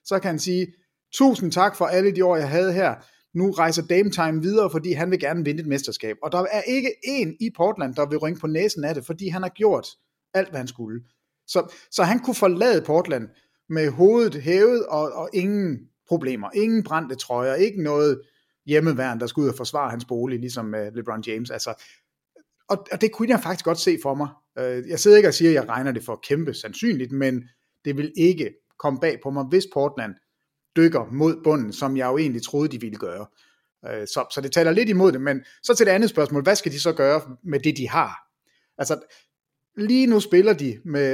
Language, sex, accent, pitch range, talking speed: English, male, Danish, 135-185 Hz, 215 wpm